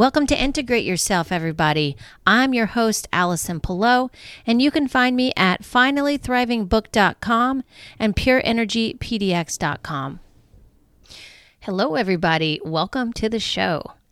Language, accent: English, American